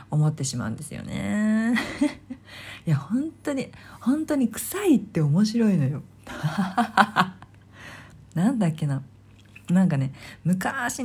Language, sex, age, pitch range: Japanese, female, 40-59, 135-200 Hz